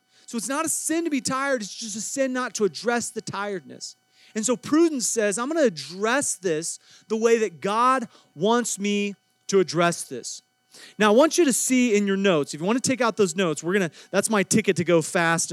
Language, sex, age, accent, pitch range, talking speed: English, male, 30-49, American, 180-235 Hz, 230 wpm